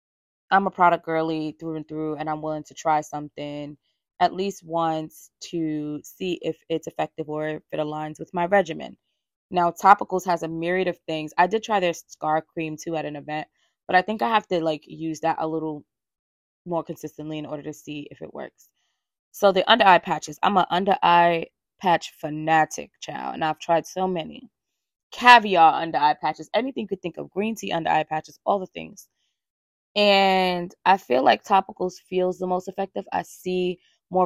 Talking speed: 185 wpm